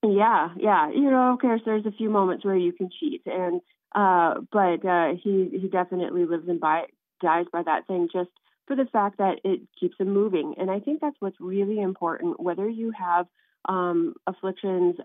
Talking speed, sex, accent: 190 wpm, female, American